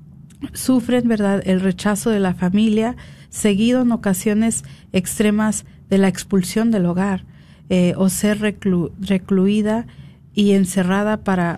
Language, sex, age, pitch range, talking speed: Spanish, female, 40-59, 185-215 Hz, 120 wpm